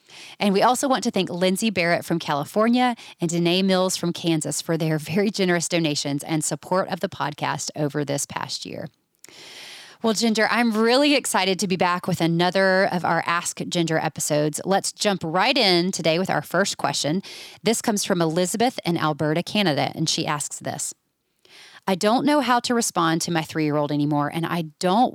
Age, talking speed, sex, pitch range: 30-49, 190 wpm, female, 155-210 Hz